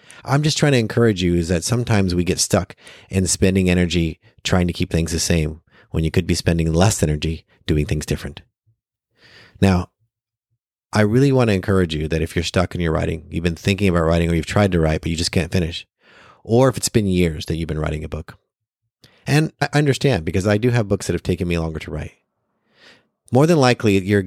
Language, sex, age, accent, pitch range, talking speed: English, male, 30-49, American, 85-110 Hz, 225 wpm